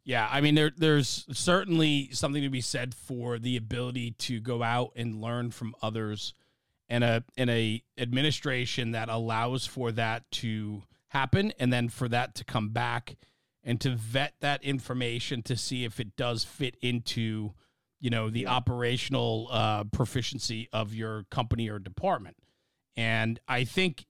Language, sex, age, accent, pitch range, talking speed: English, male, 40-59, American, 115-140 Hz, 160 wpm